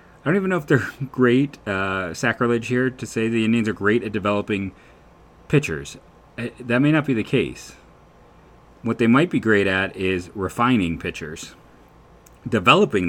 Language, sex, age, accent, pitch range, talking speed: English, male, 30-49, American, 90-110 Hz, 160 wpm